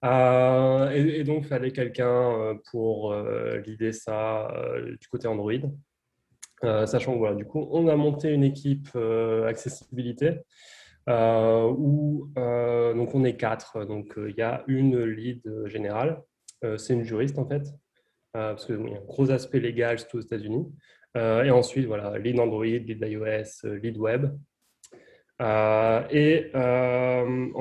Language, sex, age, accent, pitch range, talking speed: French, male, 20-39, French, 110-140 Hz, 165 wpm